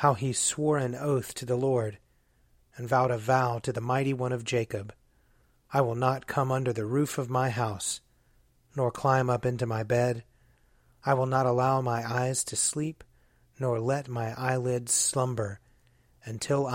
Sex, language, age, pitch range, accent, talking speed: male, English, 30-49, 120-135 Hz, American, 170 wpm